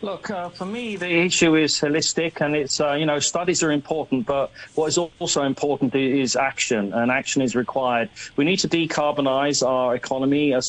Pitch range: 130-160 Hz